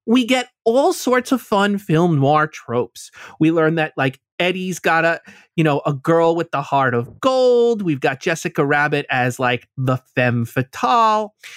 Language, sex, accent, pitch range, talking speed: English, male, American, 150-200 Hz, 175 wpm